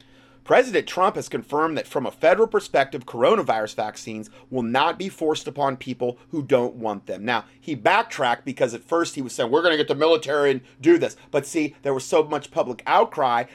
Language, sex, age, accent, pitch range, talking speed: English, male, 30-49, American, 125-155 Hz, 210 wpm